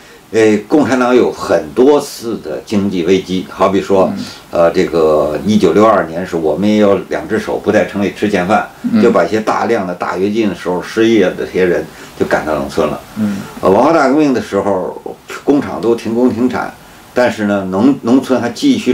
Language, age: Chinese, 50-69